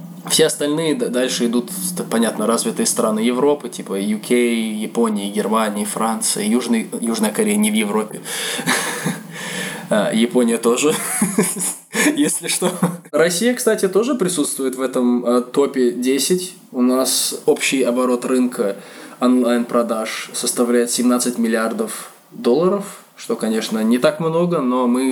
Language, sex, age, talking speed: Russian, male, 20-39, 110 wpm